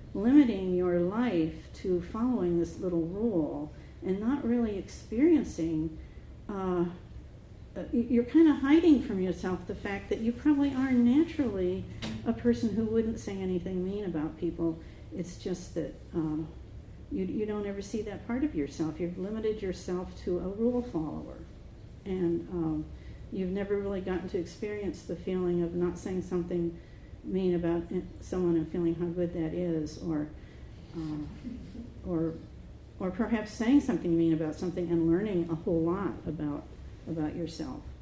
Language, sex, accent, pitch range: English, female, American, 165-215 Hz